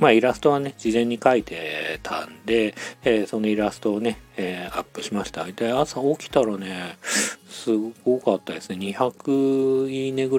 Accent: native